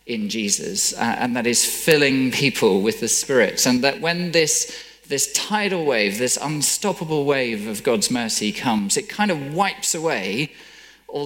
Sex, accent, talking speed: male, British, 165 wpm